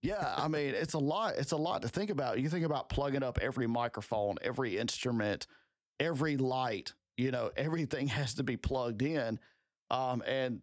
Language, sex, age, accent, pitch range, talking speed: English, male, 40-59, American, 120-145 Hz, 185 wpm